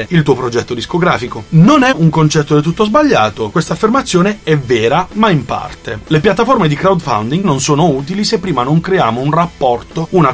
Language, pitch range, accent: Italian, 125-190 Hz, native